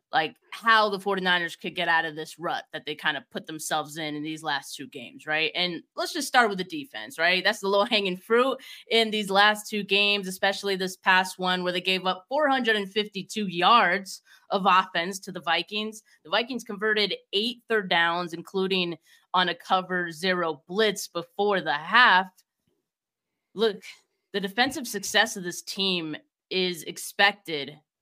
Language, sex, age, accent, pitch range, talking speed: English, female, 20-39, American, 175-210 Hz, 170 wpm